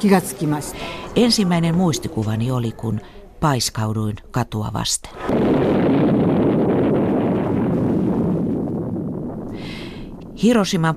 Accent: native